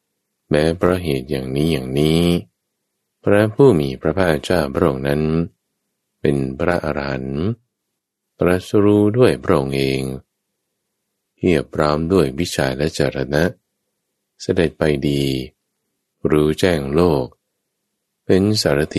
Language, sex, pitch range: Thai, male, 70-90 Hz